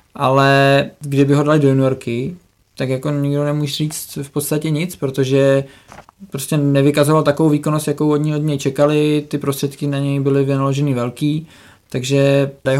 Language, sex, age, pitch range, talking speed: Czech, male, 20-39, 135-150 Hz, 160 wpm